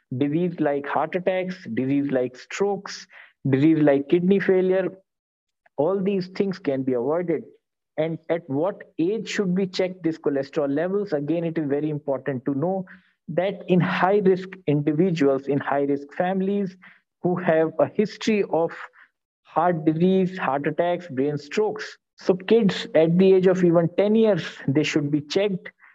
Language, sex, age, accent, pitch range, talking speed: English, male, 50-69, Indian, 150-190 Hz, 155 wpm